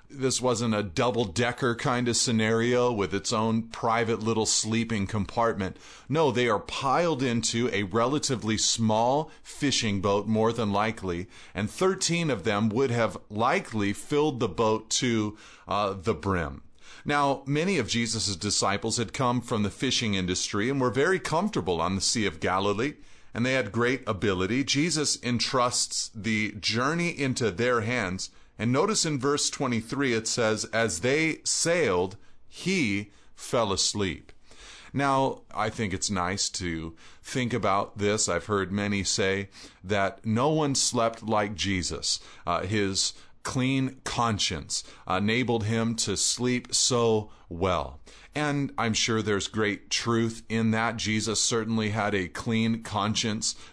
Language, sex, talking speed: English, male, 145 wpm